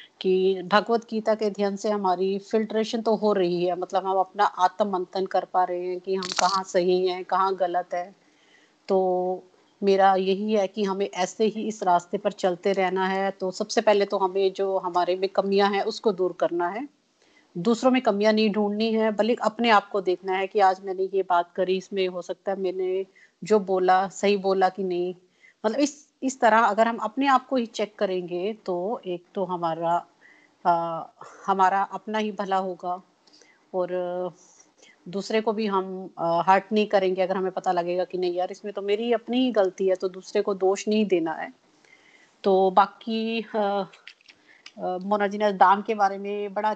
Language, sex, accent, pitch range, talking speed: Hindi, female, native, 185-215 Hz, 185 wpm